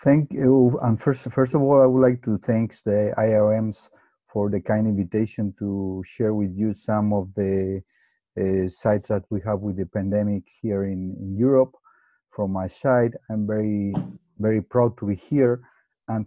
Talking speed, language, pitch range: 175 wpm, English, 105-120 Hz